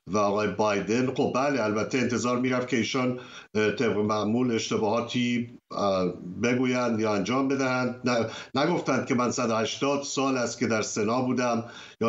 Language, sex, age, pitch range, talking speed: Persian, male, 60-79, 120-150 Hz, 145 wpm